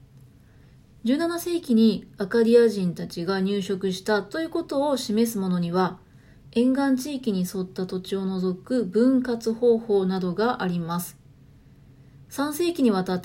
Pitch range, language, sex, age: 185-245 Hz, Japanese, female, 30-49